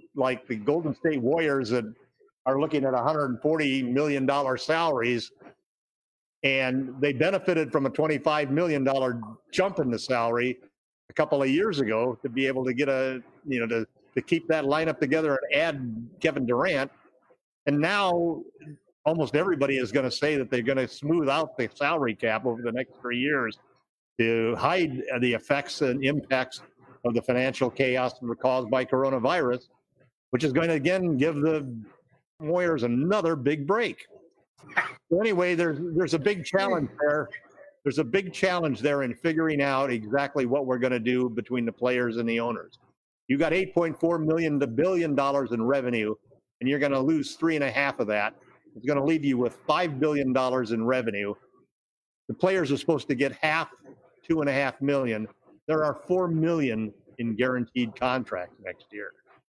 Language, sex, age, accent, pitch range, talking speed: English, male, 50-69, American, 125-155 Hz, 165 wpm